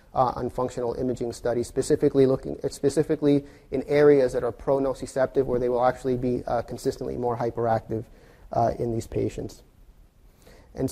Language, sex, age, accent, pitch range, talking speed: English, male, 30-49, American, 120-135 Hz, 155 wpm